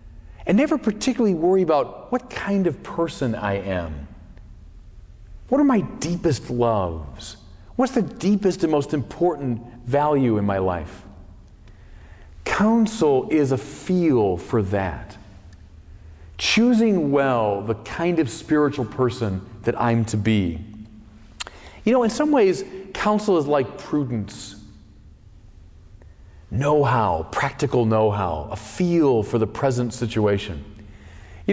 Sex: male